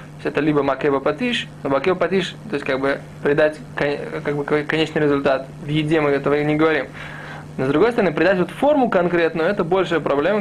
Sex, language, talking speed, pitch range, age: male, Russian, 195 wpm, 150-185 Hz, 20-39